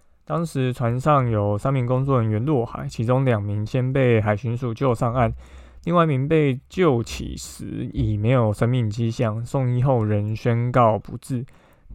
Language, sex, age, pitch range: Chinese, male, 20-39, 115-135 Hz